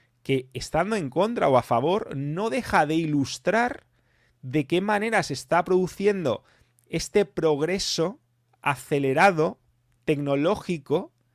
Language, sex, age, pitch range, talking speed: English, male, 30-49, 130-175 Hz, 110 wpm